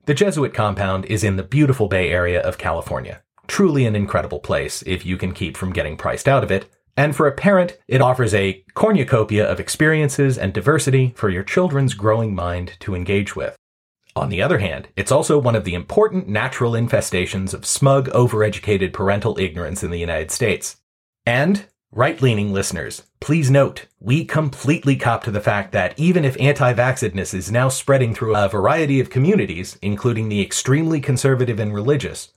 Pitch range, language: 100-140 Hz, English